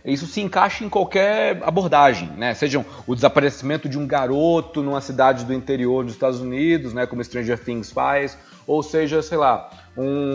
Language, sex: Portuguese, male